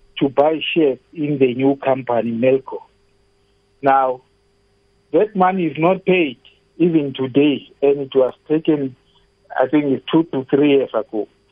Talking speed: 140 wpm